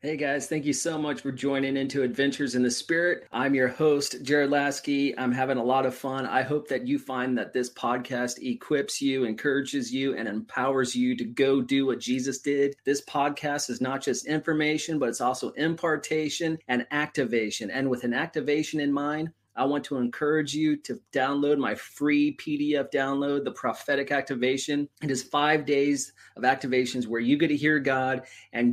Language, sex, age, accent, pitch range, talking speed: English, male, 30-49, American, 130-155 Hz, 190 wpm